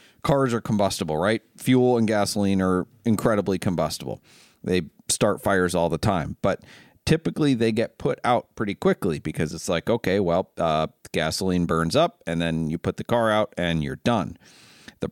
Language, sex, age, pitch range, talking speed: English, male, 40-59, 85-105 Hz, 175 wpm